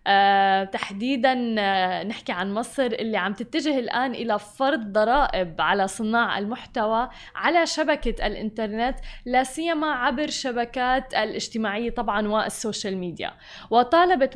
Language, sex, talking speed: Arabic, female, 115 wpm